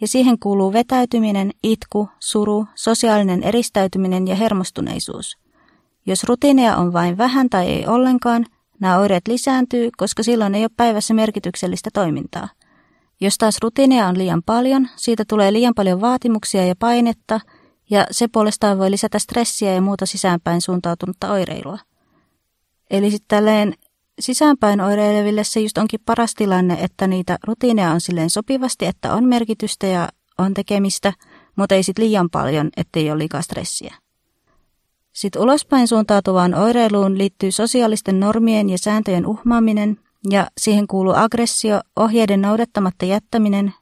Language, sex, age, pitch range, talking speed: Finnish, female, 30-49, 195-230 Hz, 135 wpm